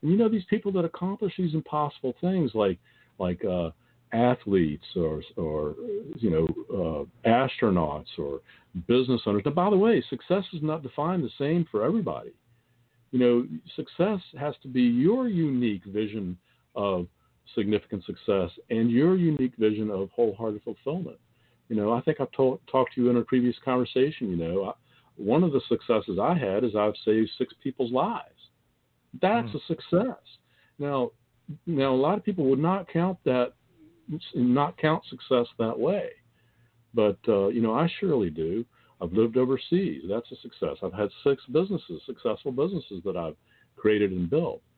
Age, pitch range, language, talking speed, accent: 50-69, 105-150 Hz, English, 165 wpm, American